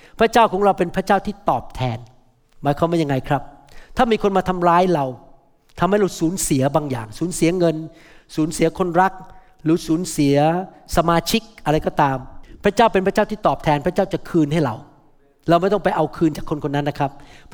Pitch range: 150-195 Hz